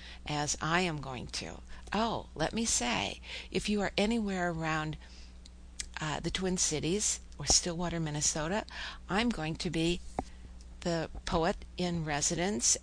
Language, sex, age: English, female, 60-79